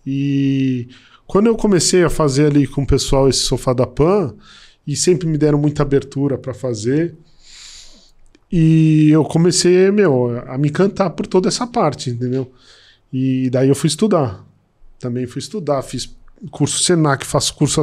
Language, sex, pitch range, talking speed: Portuguese, male, 135-165 Hz, 160 wpm